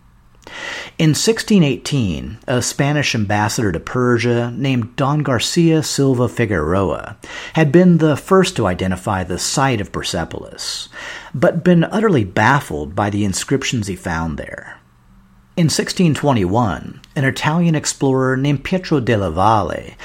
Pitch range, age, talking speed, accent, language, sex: 95-145 Hz, 50-69, 125 wpm, American, English, male